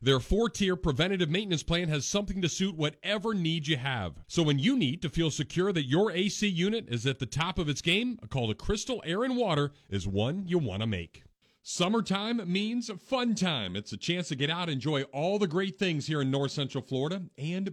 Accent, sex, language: American, male, English